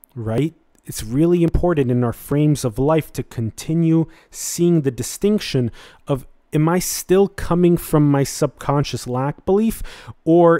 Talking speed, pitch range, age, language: 140 wpm, 120-160 Hz, 30-49, English